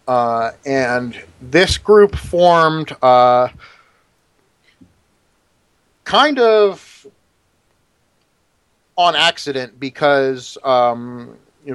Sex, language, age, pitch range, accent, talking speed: male, English, 30-49, 125-165 Hz, American, 65 wpm